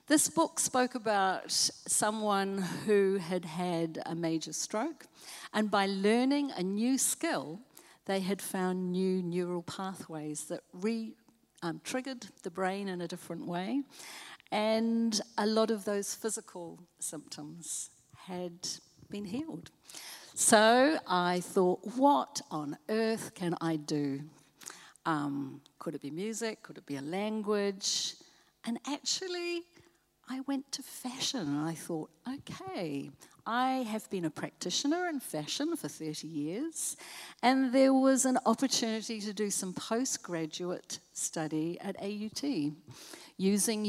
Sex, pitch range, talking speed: female, 165-230 Hz, 130 wpm